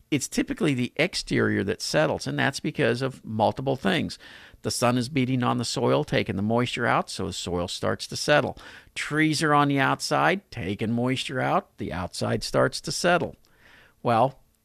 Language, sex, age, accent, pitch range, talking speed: English, male, 50-69, American, 110-145 Hz, 175 wpm